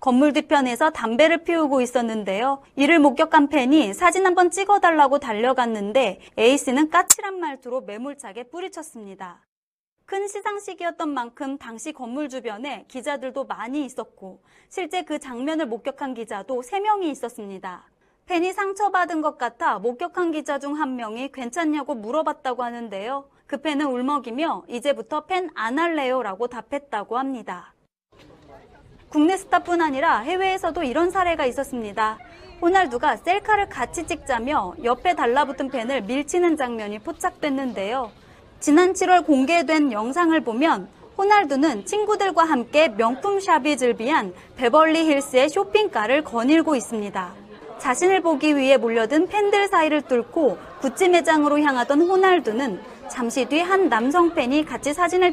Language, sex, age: Korean, female, 30-49